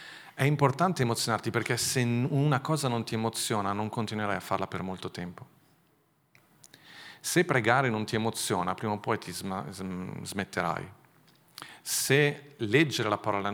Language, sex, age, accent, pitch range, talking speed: Italian, male, 40-59, native, 105-135 Hz, 135 wpm